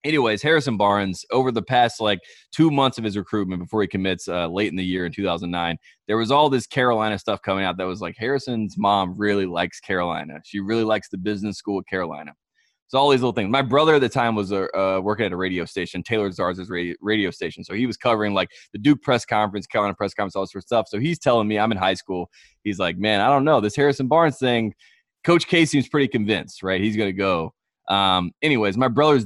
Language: English